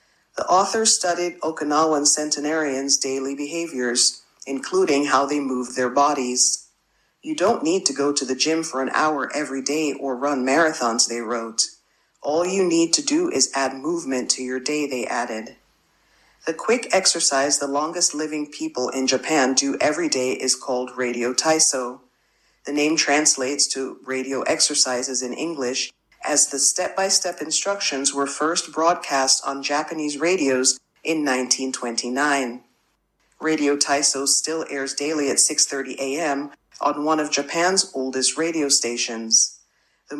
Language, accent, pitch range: Japanese, American, 130-160 Hz